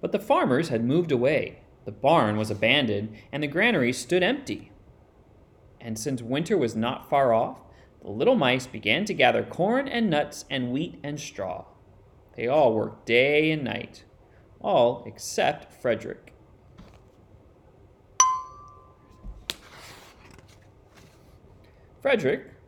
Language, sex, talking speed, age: English, male, 120 wpm, 30-49